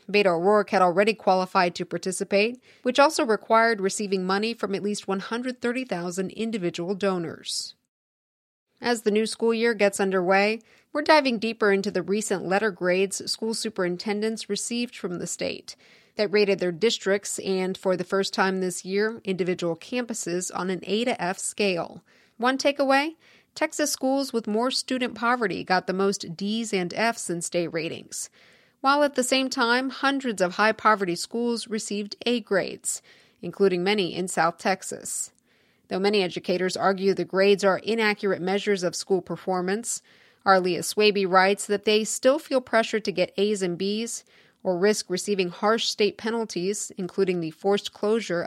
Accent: American